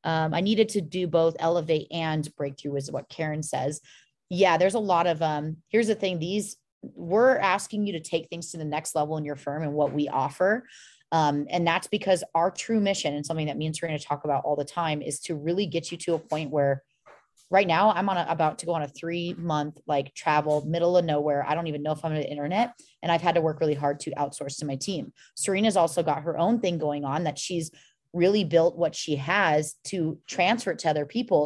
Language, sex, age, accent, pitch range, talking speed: English, female, 30-49, American, 150-180 Hz, 240 wpm